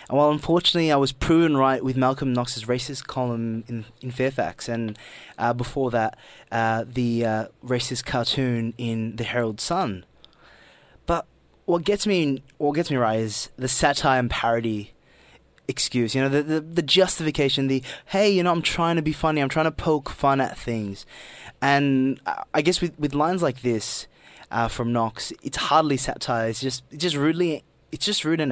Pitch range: 120-155 Hz